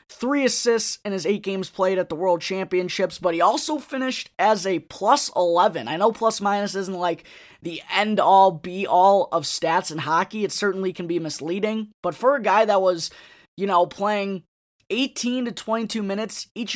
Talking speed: 175 wpm